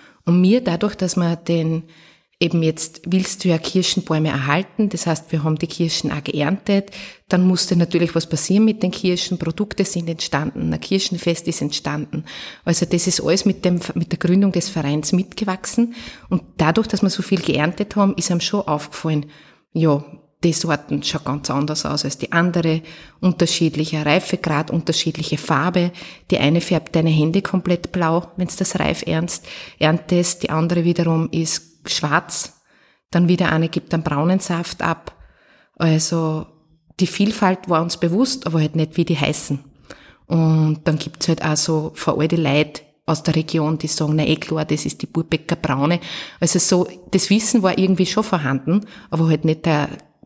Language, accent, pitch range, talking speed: German, Austrian, 155-185 Hz, 175 wpm